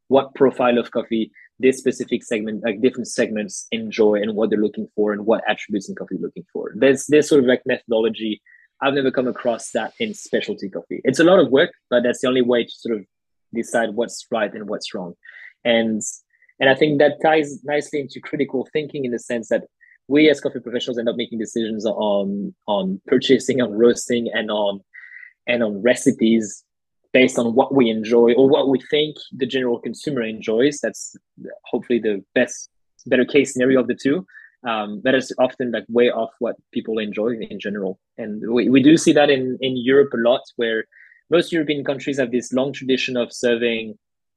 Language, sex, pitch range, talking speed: English, male, 110-135 Hz, 195 wpm